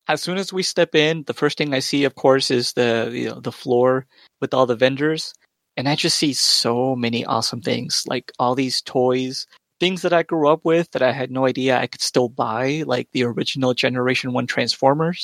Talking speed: 220 wpm